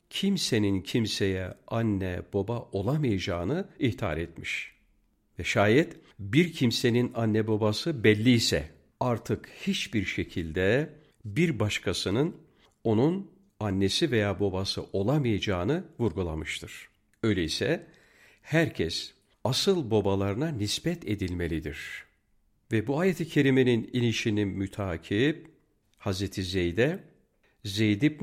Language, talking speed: Turkish, 85 wpm